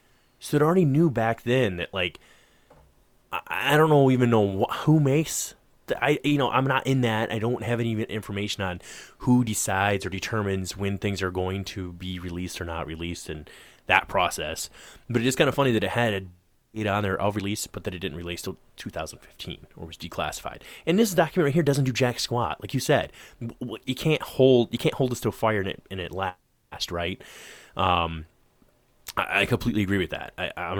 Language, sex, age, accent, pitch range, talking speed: English, male, 20-39, American, 90-120 Hz, 210 wpm